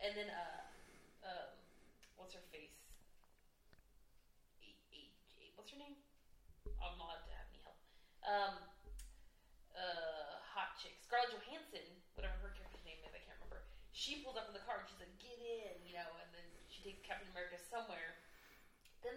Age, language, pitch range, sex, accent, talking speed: 20-39, English, 180-225 Hz, female, American, 165 wpm